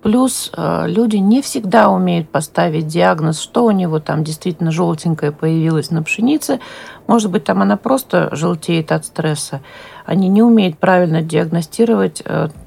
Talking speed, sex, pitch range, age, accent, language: 145 wpm, female, 155-215 Hz, 40-59, native, Russian